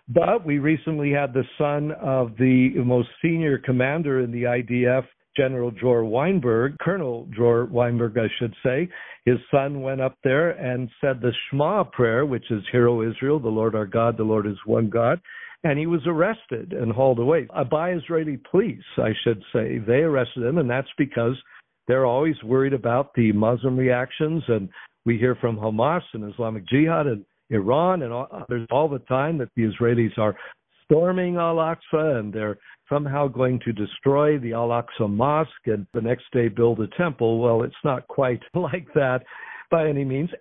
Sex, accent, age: male, American, 60-79